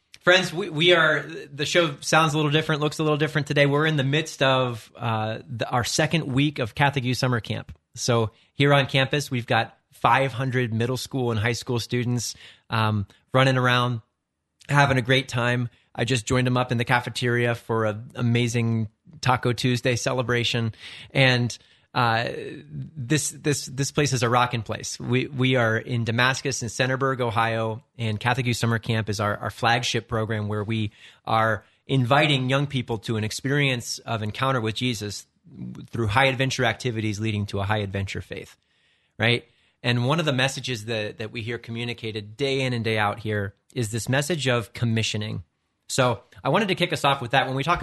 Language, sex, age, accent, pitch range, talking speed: English, male, 30-49, American, 115-135 Hz, 185 wpm